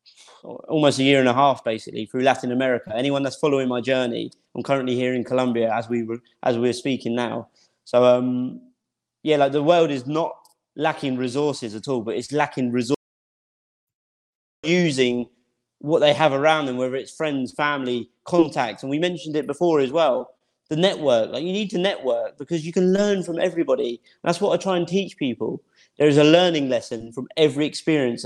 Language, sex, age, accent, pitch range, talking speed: English, male, 30-49, British, 125-170 Hz, 190 wpm